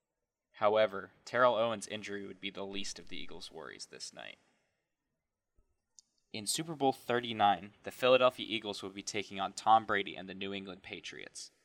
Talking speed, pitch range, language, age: 165 wpm, 100-120 Hz, English, 20-39